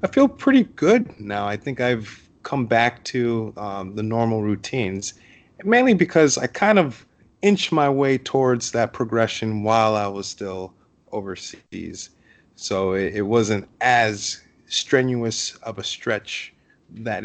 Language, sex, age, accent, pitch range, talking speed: English, male, 30-49, American, 110-135 Hz, 145 wpm